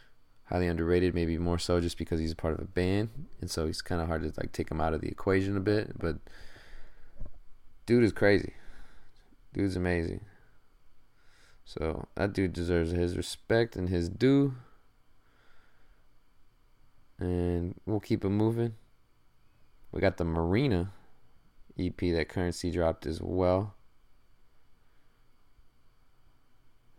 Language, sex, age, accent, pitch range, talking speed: English, male, 20-39, American, 85-105 Hz, 135 wpm